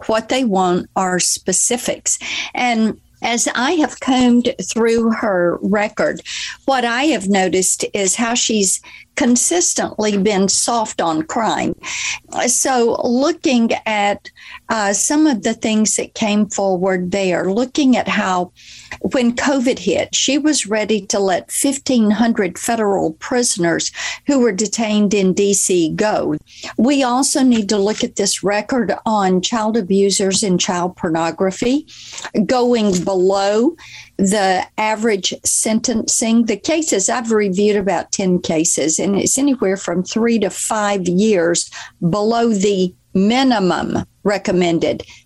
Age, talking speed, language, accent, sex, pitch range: 50-69, 125 wpm, English, American, female, 195-250 Hz